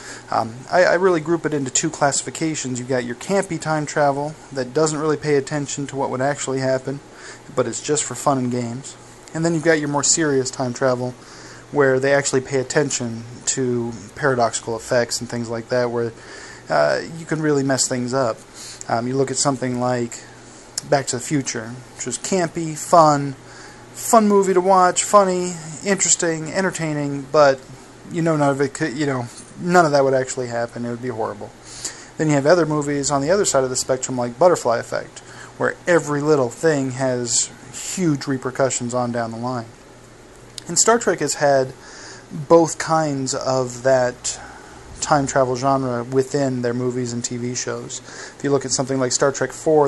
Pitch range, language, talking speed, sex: 125-155 Hz, English, 185 wpm, male